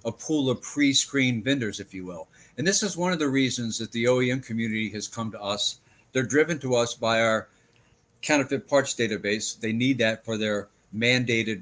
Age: 60-79